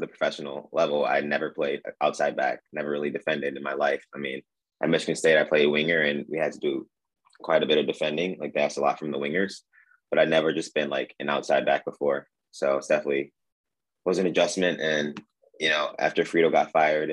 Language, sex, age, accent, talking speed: English, male, 20-39, American, 215 wpm